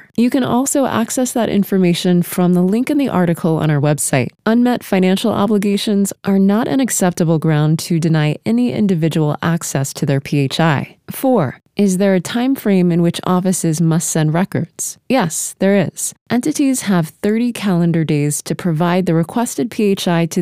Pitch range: 160-215 Hz